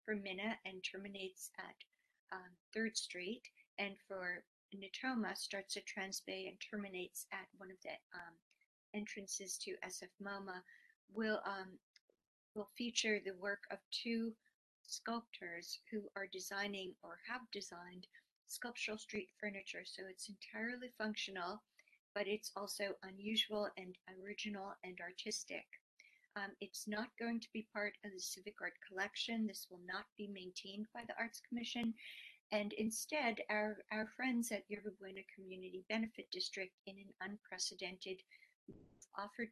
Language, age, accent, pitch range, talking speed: English, 50-69, American, 190-220 Hz, 130 wpm